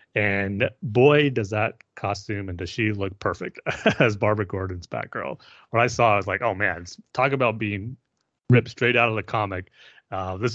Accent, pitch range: American, 100-125 Hz